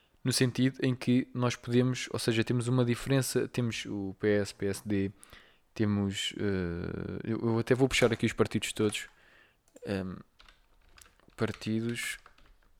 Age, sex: 20-39, male